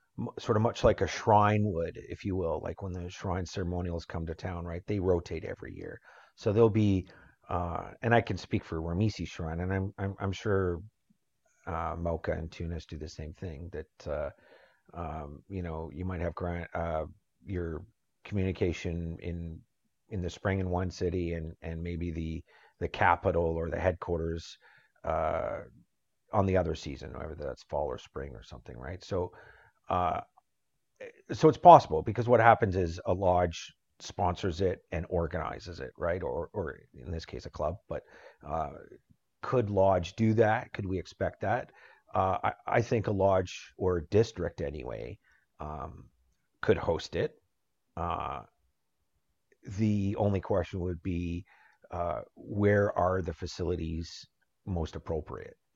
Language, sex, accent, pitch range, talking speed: English, male, American, 85-100 Hz, 160 wpm